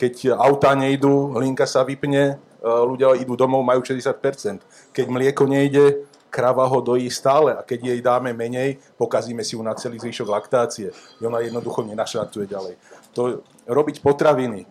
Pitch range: 115-135 Hz